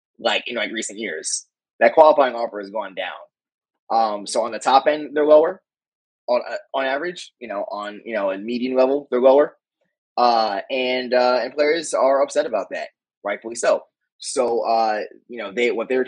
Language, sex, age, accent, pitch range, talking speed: English, male, 20-39, American, 110-140 Hz, 195 wpm